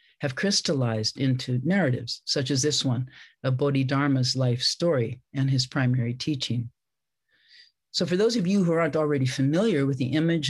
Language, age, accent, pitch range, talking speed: English, 50-69, American, 130-155 Hz, 160 wpm